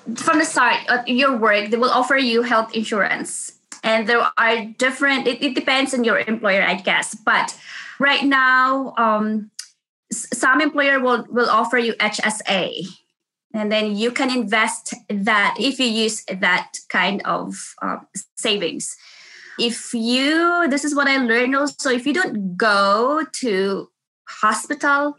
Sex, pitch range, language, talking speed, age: female, 200-245 Hz, English, 150 wpm, 20-39